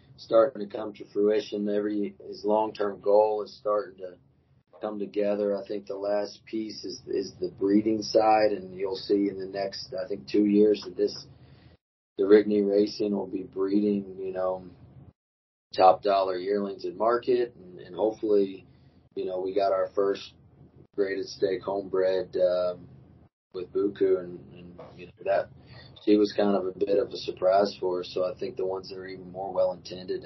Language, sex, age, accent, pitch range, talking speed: English, male, 30-49, American, 95-110 Hz, 180 wpm